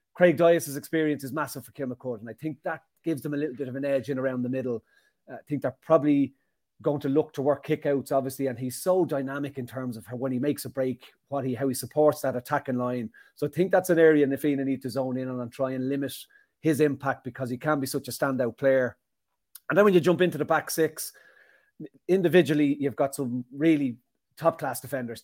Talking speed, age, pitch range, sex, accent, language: 235 wpm, 30-49, 130-155 Hz, male, Irish, English